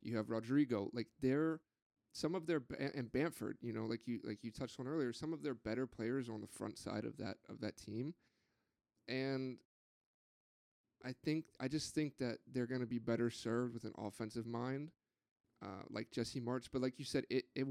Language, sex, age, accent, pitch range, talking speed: English, male, 30-49, American, 115-135 Hz, 205 wpm